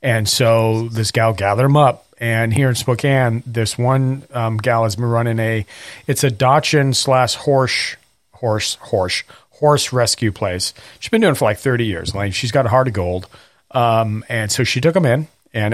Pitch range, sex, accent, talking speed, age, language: 110-135 Hz, male, American, 200 wpm, 40-59, English